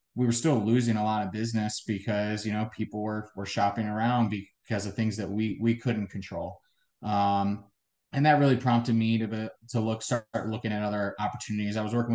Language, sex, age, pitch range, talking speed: English, male, 20-39, 105-120 Hz, 200 wpm